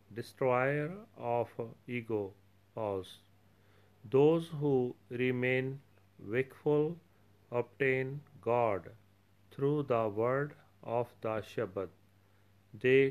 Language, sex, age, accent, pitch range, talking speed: English, male, 40-59, Indian, 110-135 Hz, 75 wpm